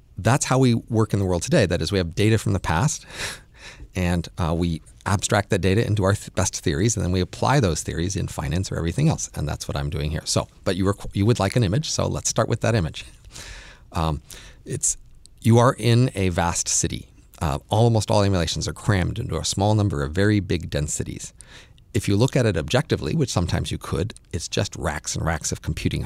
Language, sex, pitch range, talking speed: English, male, 90-115 Hz, 225 wpm